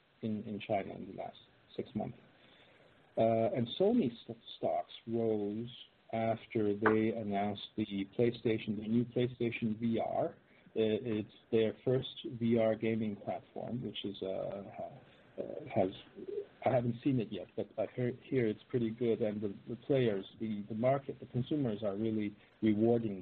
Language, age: English, 50-69